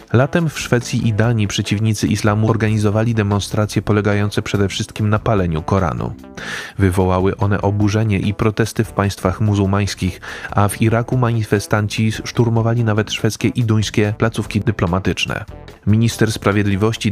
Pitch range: 100-110 Hz